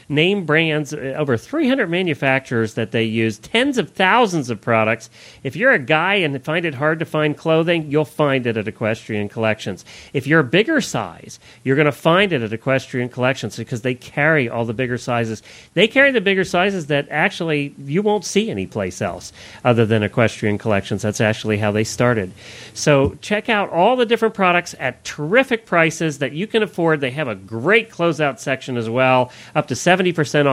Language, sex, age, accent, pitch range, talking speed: English, male, 40-59, American, 120-190 Hz, 195 wpm